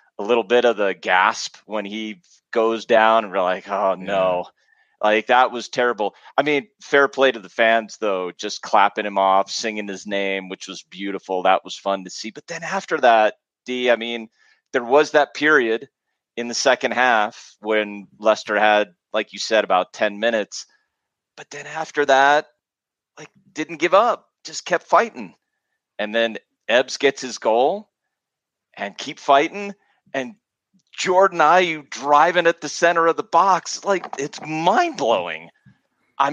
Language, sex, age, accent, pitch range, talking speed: English, male, 30-49, American, 100-150 Hz, 170 wpm